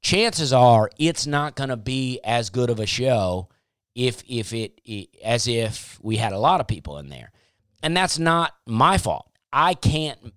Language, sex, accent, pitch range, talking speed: English, male, American, 110-145 Hz, 185 wpm